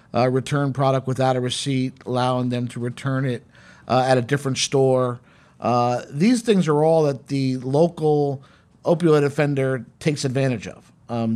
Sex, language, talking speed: male, English, 160 wpm